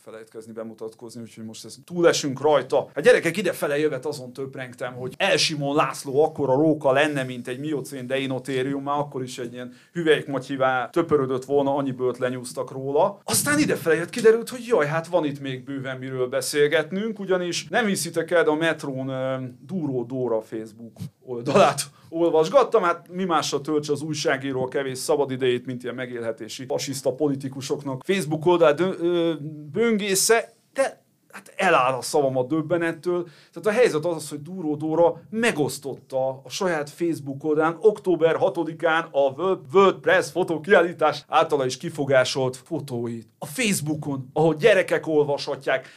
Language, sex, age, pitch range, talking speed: Hungarian, male, 30-49, 130-170 Hz, 145 wpm